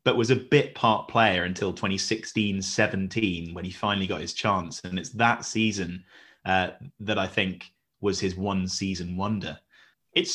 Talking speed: 155 wpm